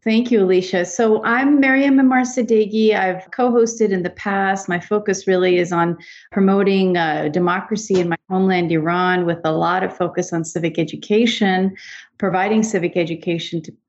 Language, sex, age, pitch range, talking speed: English, female, 40-59, 170-200 Hz, 155 wpm